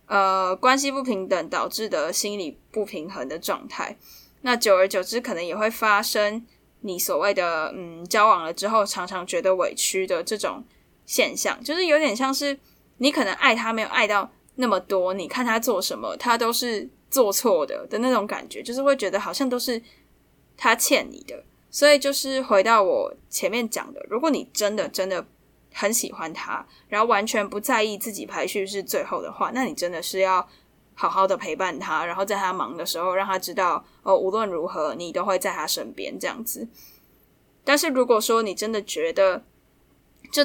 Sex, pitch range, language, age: female, 190-255 Hz, Chinese, 10-29